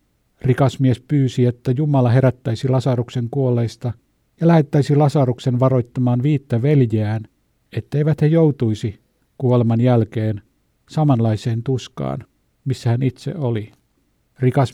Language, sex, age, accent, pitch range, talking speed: Finnish, male, 50-69, native, 120-140 Hz, 105 wpm